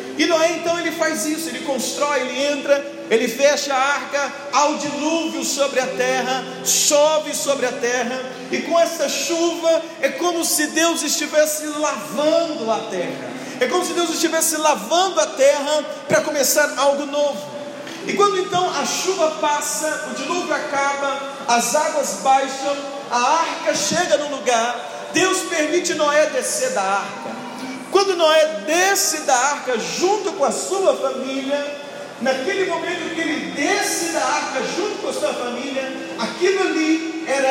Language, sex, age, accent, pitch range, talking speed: Portuguese, male, 40-59, Brazilian, 270-335 Hz, 155 wpm